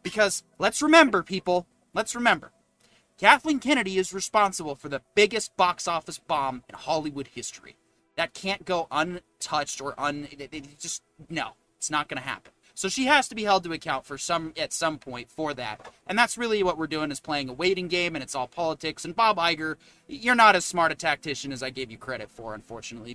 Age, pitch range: 30-49, 155-235 Hz